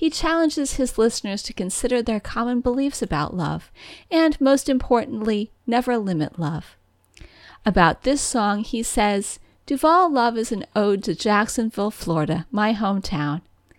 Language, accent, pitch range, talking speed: English, American, 170-245 Hz, 140 wpm